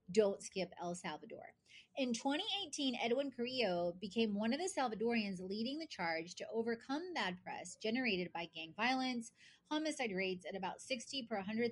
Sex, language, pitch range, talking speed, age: female, English, 195-265 Hz, 160 wpm, 30-49